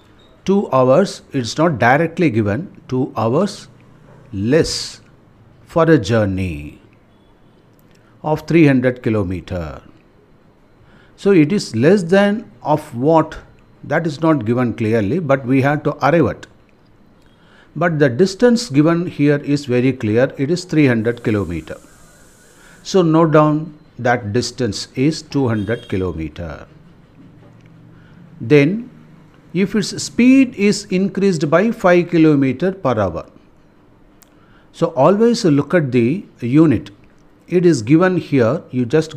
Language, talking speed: Tamil, 115 wpm